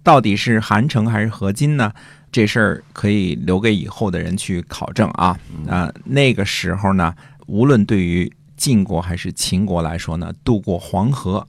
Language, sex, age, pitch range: Chinese, male, 50-69, 90-120 Hz